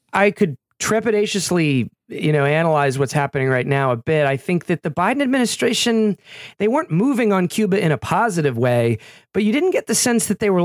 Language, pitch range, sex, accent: English, 130-185 Hz, male, American